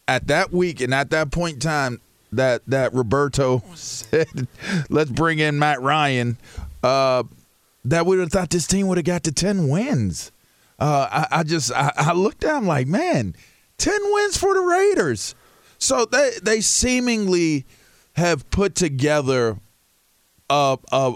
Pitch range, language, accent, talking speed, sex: 130-185 Hz, English, American, 160 wpm, male